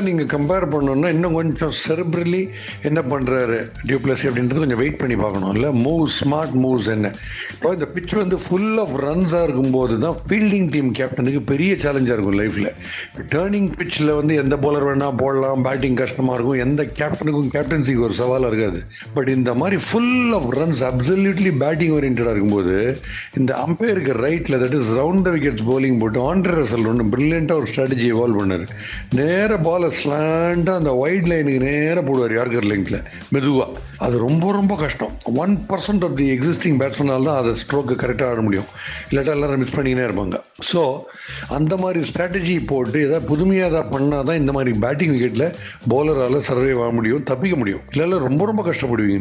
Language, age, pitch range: Tamil, 60-79, 125-165 Hz